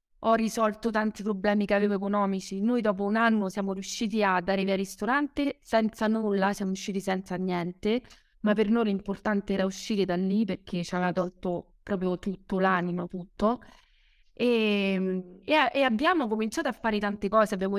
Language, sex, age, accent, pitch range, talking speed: Italian, female, 30-49, native, 190-225 Hz, 165 wpm